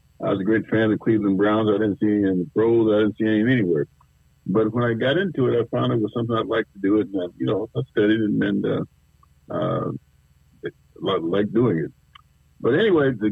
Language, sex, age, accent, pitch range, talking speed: English, male, 60-79, American, 90-115 Hz, 240 wpm